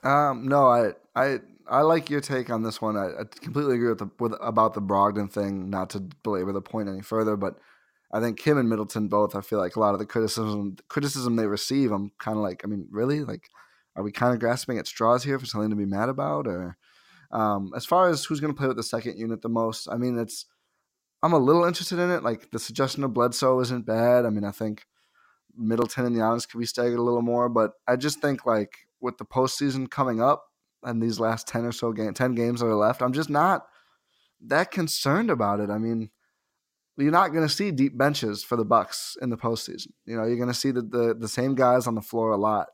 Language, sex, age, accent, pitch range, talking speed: English, male, 20-39, American, 105-130 Hz, 245 wpm